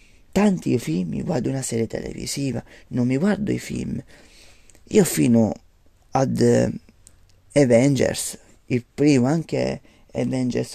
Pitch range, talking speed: 115-165 Hz, 110 wpm